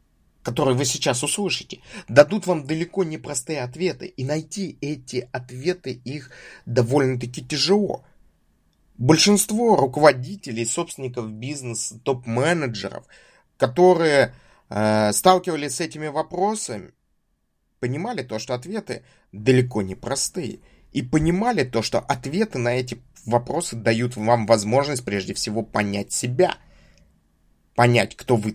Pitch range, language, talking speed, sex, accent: 115-170 Hz, Russian, 110 wpm, male, native